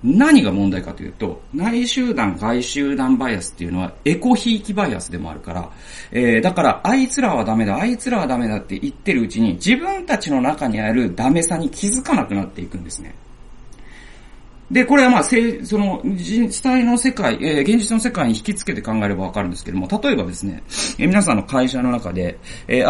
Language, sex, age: Japanese, male, 40-59